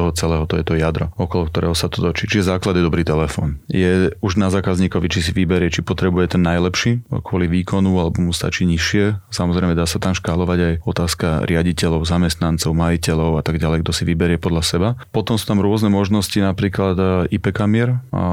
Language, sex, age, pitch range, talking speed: Slovak, male, 30-49, 85-95 Hz, 185 wpm